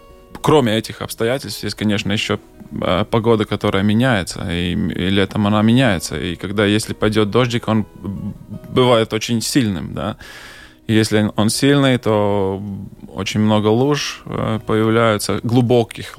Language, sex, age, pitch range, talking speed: Russian, male, 20-39, 100-120 Hz, 120 wpm